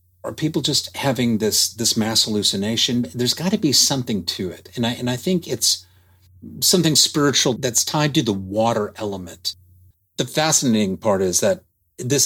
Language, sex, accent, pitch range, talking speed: English, male, American, 100-130 Hz, 170 wpm